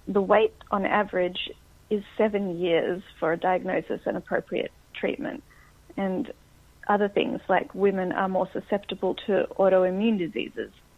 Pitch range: 180-210 Hz